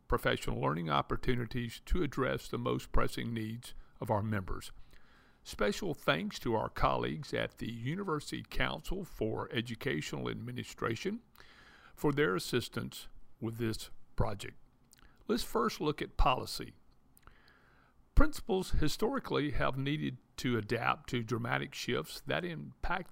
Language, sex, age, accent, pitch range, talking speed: English, male, 50-69, American, 110-150 Hz, 120 wpm